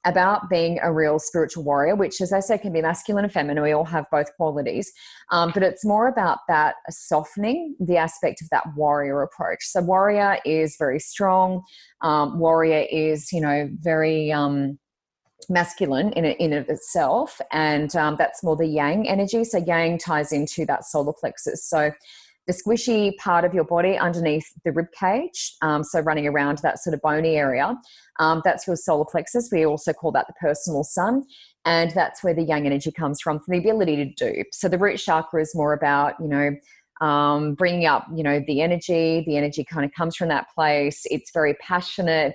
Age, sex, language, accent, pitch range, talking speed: 20-39, female, English, Australian, 150-180 Hz, 195 wpm